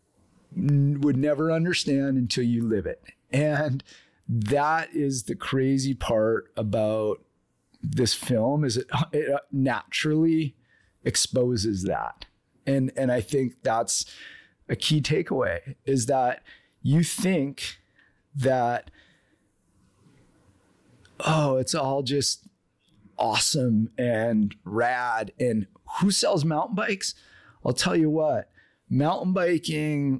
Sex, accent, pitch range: male, American, 125-155 Hz